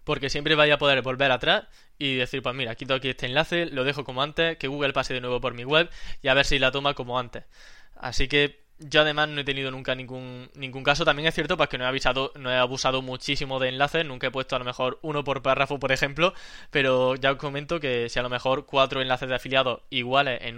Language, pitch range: Spanish, 130-145 Hz